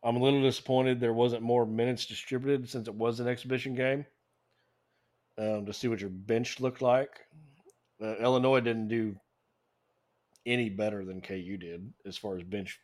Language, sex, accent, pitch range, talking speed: English, male, American, 105-120 Hz, 170 wpm